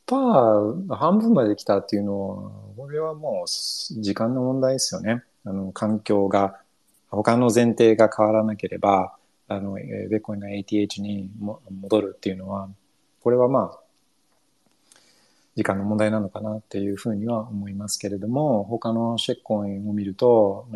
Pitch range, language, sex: 100-125 Hz, Japanese, male